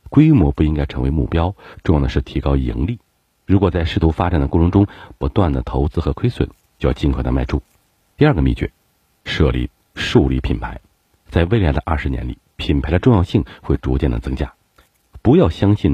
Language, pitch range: Chinese, 70-100 Hz